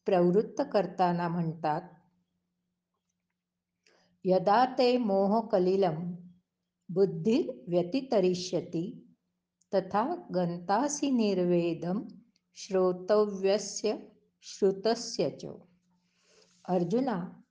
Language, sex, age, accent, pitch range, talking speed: Marathi, female, 60-79, native, 180-220 Hz, 35 wpm